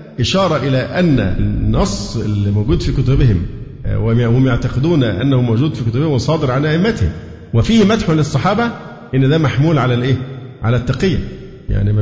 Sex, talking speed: male, 145 wpm